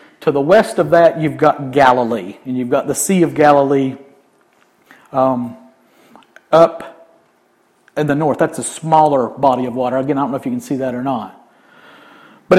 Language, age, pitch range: English, 50-69, 140-175 Hz